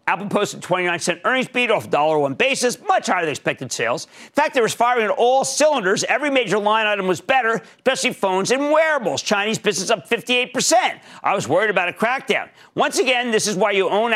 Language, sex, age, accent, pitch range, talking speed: English, male, 50-69, American, 155-235 Hz, 210 wpm